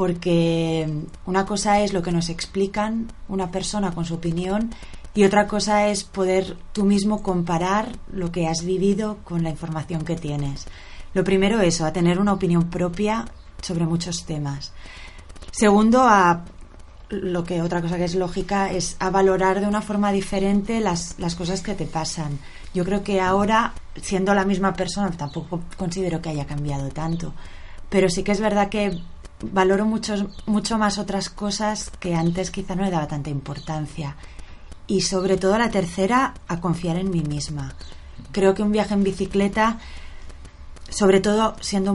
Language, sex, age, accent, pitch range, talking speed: Spanish, female, 20-39, Spanish, 170-200 Hz, 165 wpm